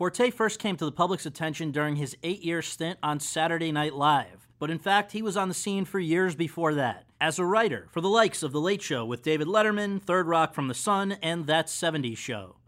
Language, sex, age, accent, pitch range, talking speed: English, male, 30-49, American, 145-190 Hz, 230 wpm